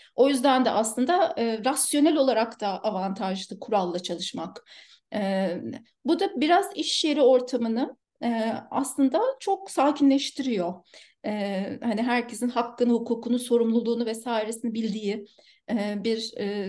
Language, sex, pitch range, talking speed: Turkish, female, 210-255 Hz, 115 wpm